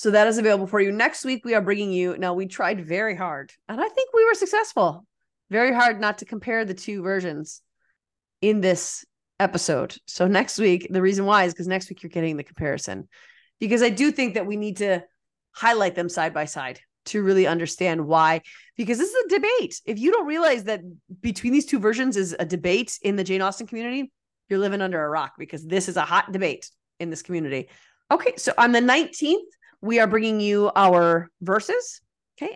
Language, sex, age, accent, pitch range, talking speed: English, female, 30-49, American, 185-240 Hz, 210 wpm